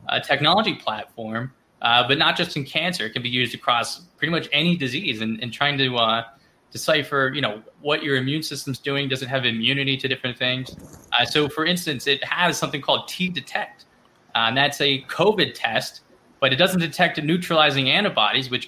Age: 20-39